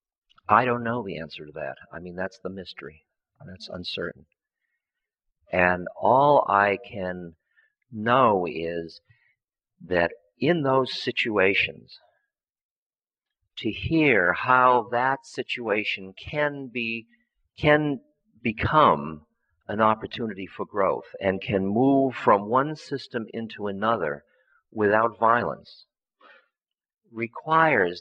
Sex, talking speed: male, 100 wpm